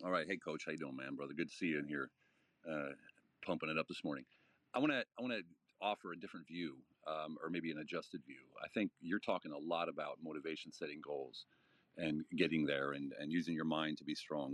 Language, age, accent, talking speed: English, 40-59, American, 230 wpm